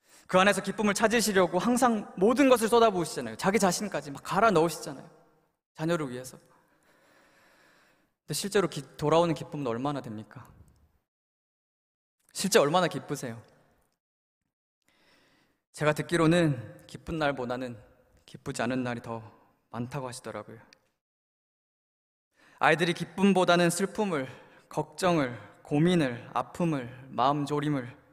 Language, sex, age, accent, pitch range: Korean, male, 20-39, native, 135-185 Hz